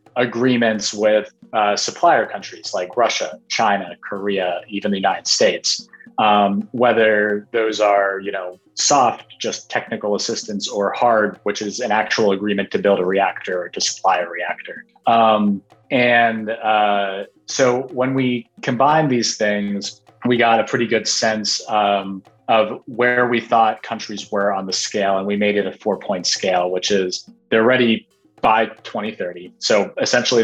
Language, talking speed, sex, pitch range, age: English, 160 wpm, male, 100-115 Hz, 30-49